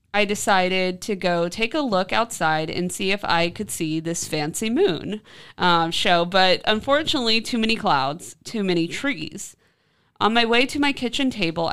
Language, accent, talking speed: English, American, 175 wpm